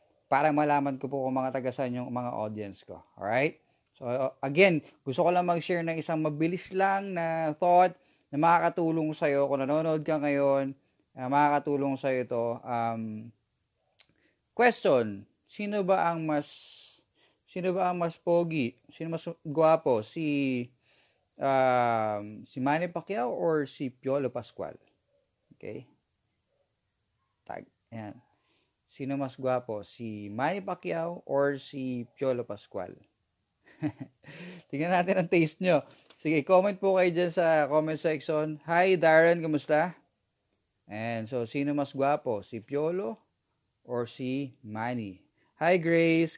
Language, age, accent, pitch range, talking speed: English, 20-39, Filipino, 130-170 Hz, 130 wpm